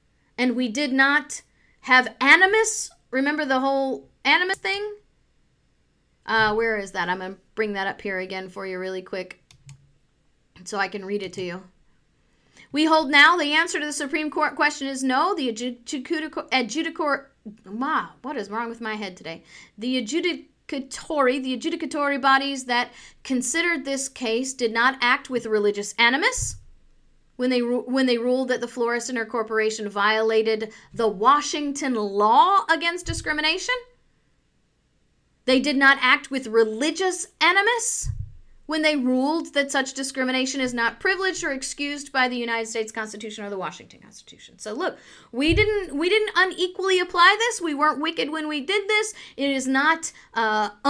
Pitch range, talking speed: 225-320 Hz, 155 wpm